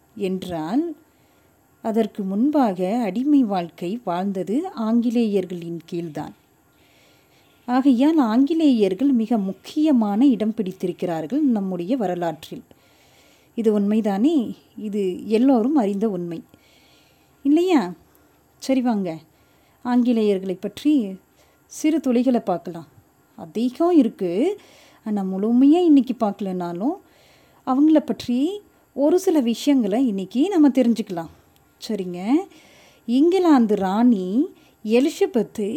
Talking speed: 80 wpm